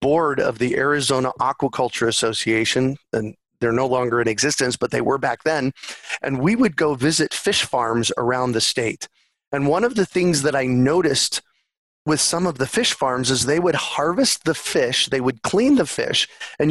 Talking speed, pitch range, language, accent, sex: 190 wpm, 125-155 Hz, English, American, male